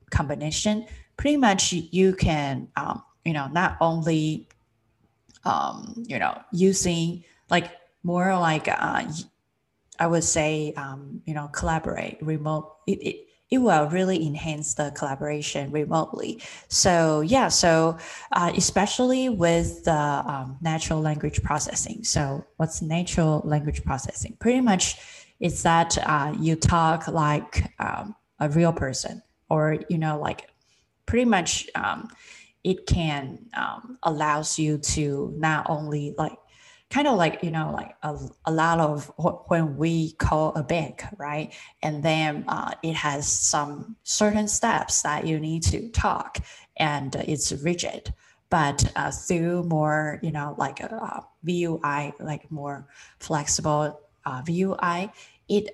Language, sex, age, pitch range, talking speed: English, female, 20-39, 150-175 Hz, 135 wpm